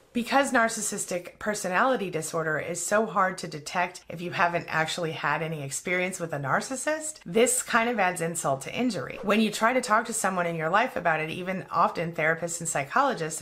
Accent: American